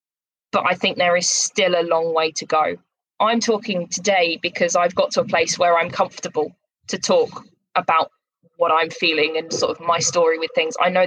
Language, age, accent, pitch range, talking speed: English, 20-39, British, 175-235 Hz, 205 wpm